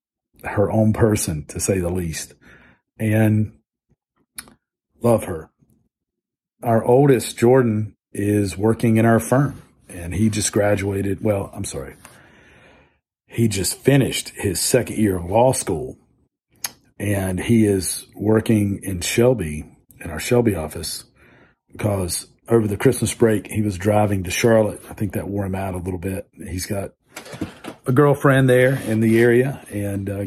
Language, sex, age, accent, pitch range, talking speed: English, male, 40-59, American, 100-115 Hz, 145 wpm